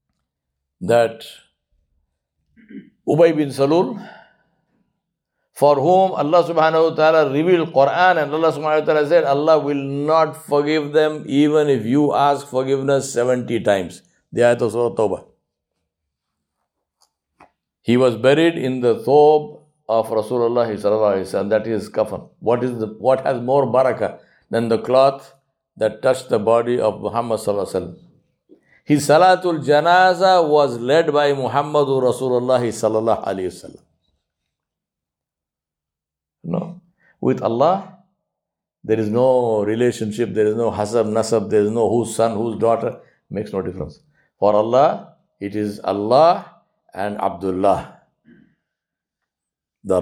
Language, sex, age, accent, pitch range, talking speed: English, male, 60-79, Indian, 110-150 Hz, 125 wpm